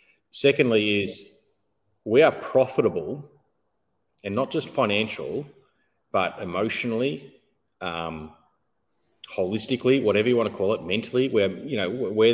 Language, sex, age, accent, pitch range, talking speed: English, male, 30-49, Australian, 95-130 Hz, 115 wpm